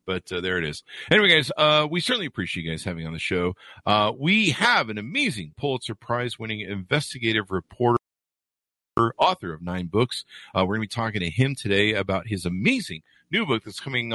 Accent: American